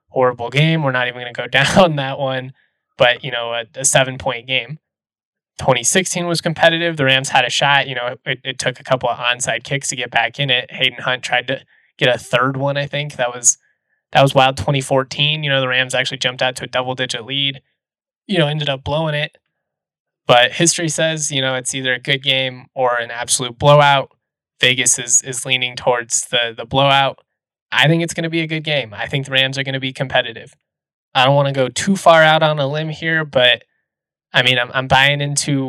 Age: 20-39